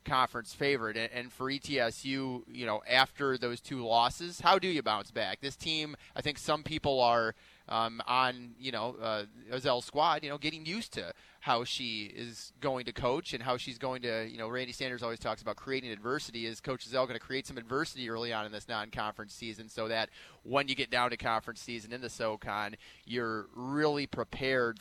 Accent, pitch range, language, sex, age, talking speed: American, 115-140 Hz, English, male, 30-49, 205 wpm